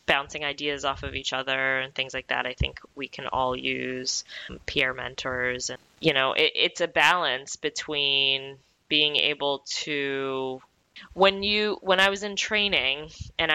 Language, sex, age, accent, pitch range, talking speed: English, female, 20-39, American, 130-155 Hz, 165 wpm